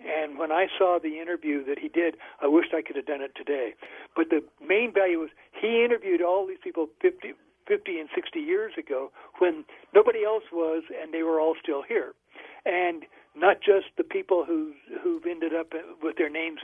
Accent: American